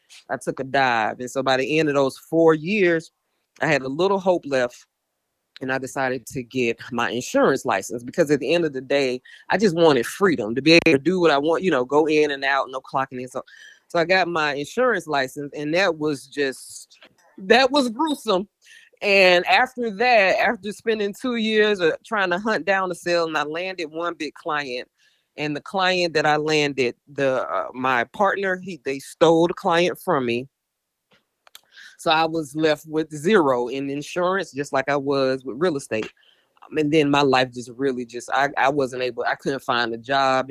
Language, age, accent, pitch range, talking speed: English, 20-39, American, 130-170 Hz, 205 wpm